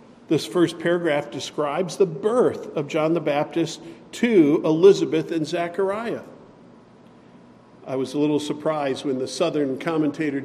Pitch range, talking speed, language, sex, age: 145-180 Hz, 130 wpm, English, male, 50-69